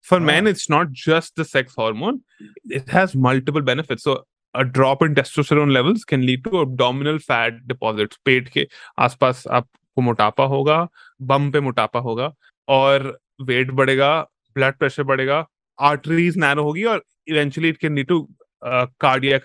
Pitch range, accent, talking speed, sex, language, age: 125-160 Hz, native, 155 wpm, male, Hindi, 20-39